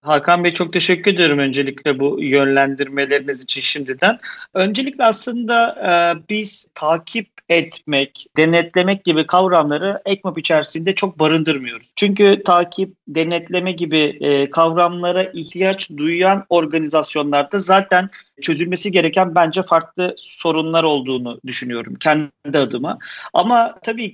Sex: male